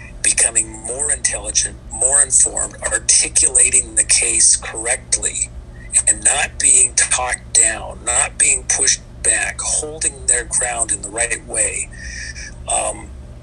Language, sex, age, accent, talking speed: English, male, 40-59, American, 115 wpm